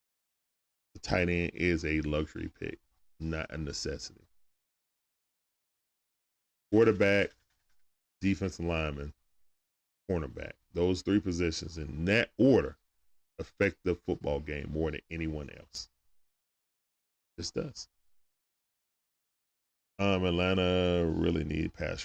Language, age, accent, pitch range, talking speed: English, 10-29, American, 80-100 Hz, 95 wpm